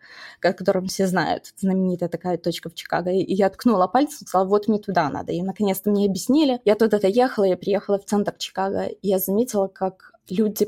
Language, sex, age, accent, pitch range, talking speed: Russian, female, 20-39, native, 185-210 Hz, 200 wpm